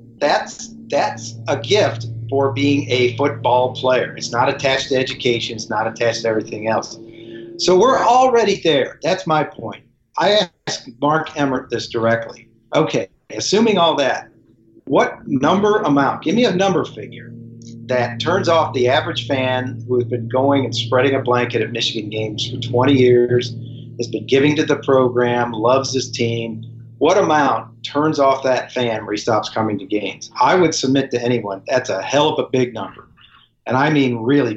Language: English